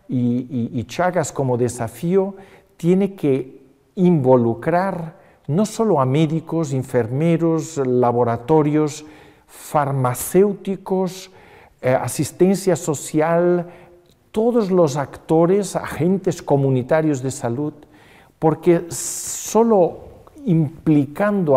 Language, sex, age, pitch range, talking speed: Spanish, male, 50-69, 125-175 Hz, 80 wpm